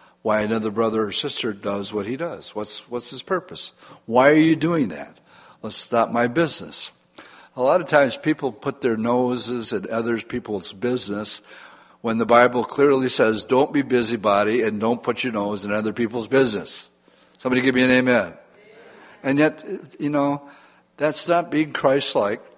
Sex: male